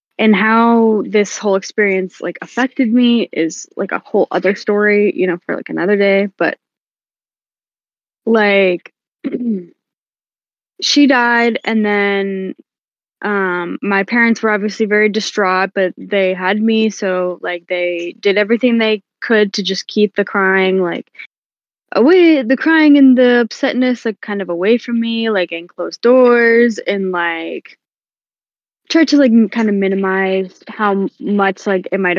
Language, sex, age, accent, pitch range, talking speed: English, female, 10-29, American, 190-235 Hz, 150 wpm